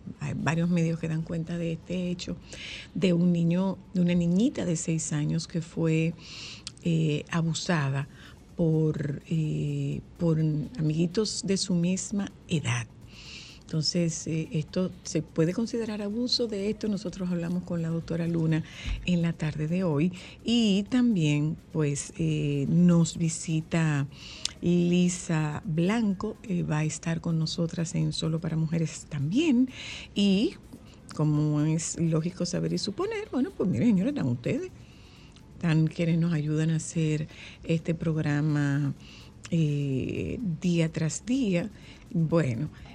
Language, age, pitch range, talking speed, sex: Spanish, 50-69, 150-175 Hz, 130 wpm, female